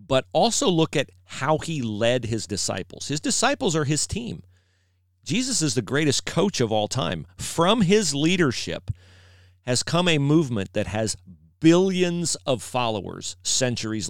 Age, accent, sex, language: 40-59, American, male, English